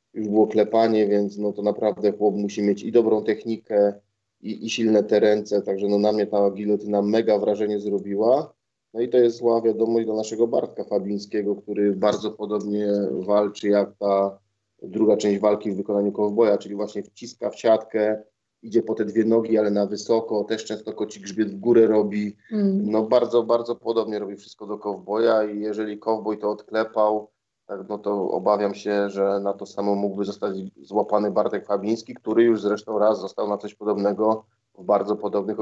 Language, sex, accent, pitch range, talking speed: Polish, male, native, 100-110 Hz, 180 wpm